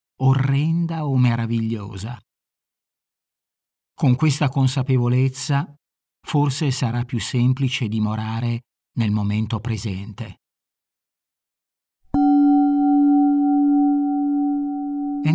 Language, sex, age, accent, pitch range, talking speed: Italian, male, 50-69, native, 110-150 Hz, 60 wpm